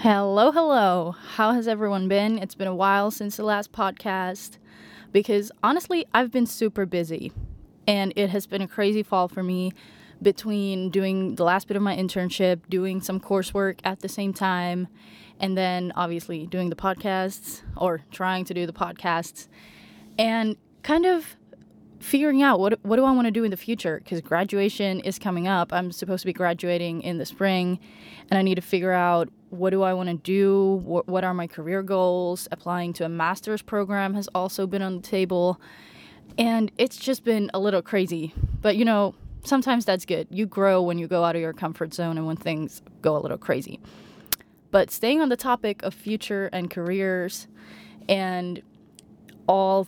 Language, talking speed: English, 185 wpm